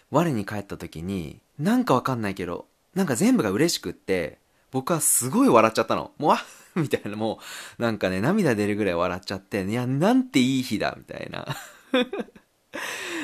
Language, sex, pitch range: Japanese, male, 100-135 Hz